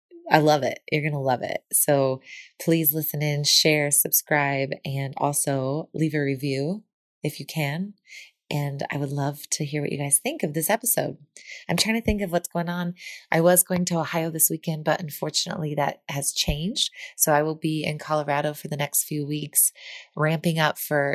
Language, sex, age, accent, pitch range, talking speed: English, female, 20-39, American, 145-170 Hz, 195 wpm